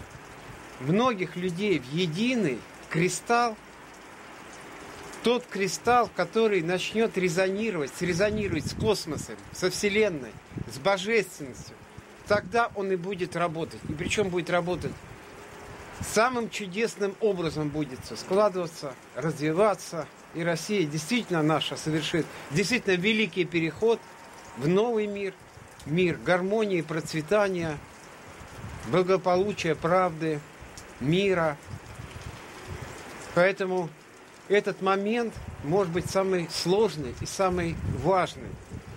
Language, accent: Russian, native